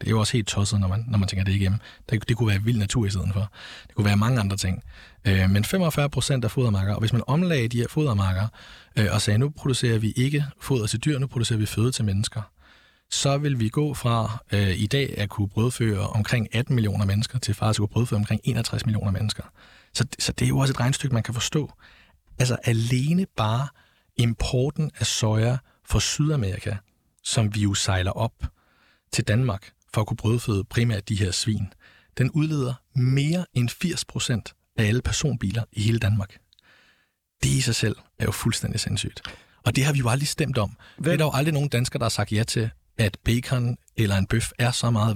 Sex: male